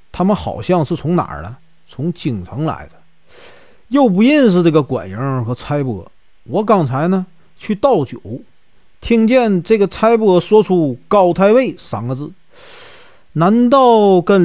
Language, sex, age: Chinese, male, 40-59